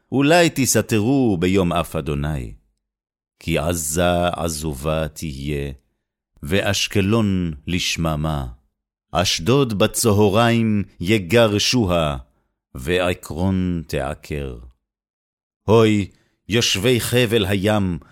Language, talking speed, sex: Hebrew, 65 wpm, male